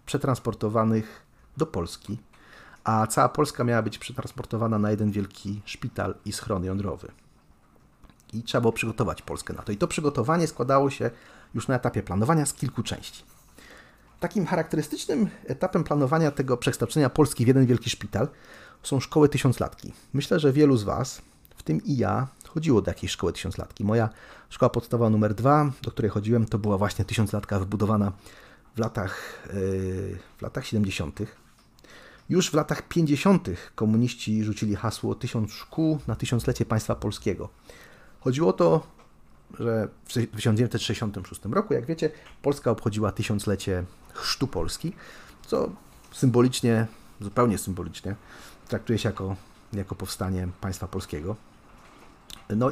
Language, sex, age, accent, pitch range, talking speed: Polish, male, 40-59, native, 100-130 Hz, 135 wpm